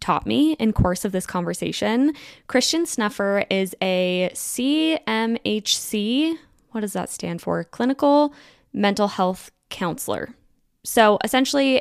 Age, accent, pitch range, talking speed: 10-29, American, 185-245 Hz, 115 wpm